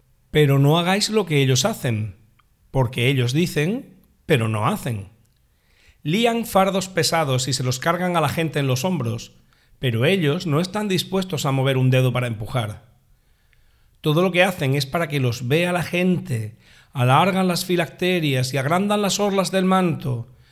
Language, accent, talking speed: Spanish, Spanish, 165 wpm